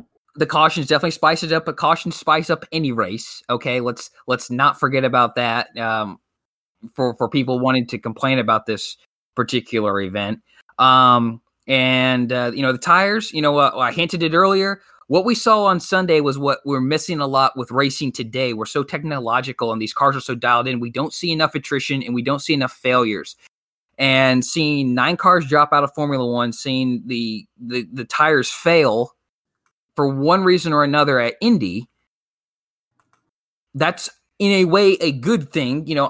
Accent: American